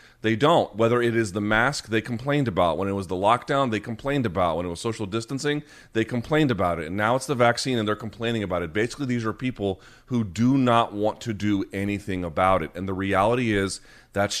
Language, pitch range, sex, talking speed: English, 105-135 Hz, male, 230 wpm